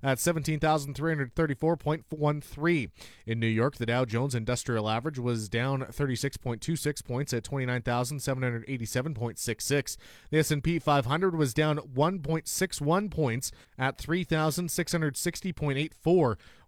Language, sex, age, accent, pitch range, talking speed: English, male, 30-49, American, 130-165 Hz, 90 wpm